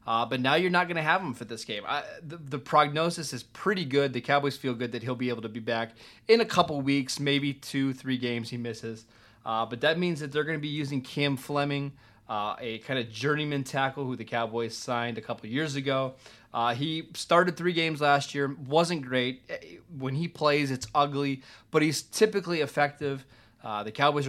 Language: English